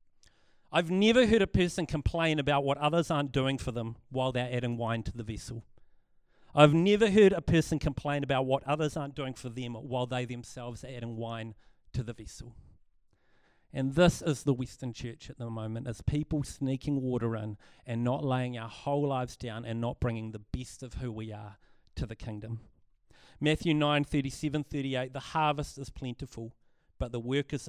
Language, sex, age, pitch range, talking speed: English, male, 40-59, 120-150 Hz, 185 wpm